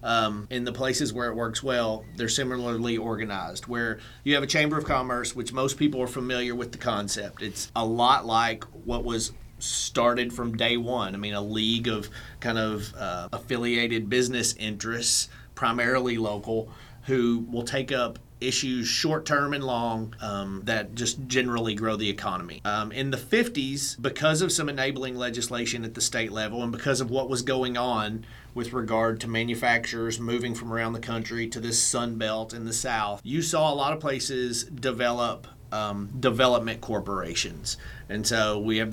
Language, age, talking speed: English, 30-49, 175 wpm